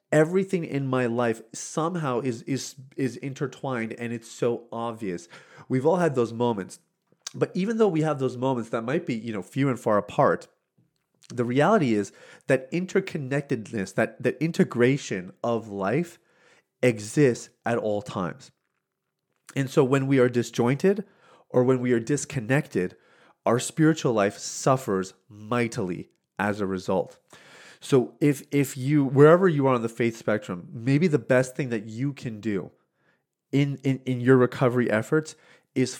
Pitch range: 115-140 Hz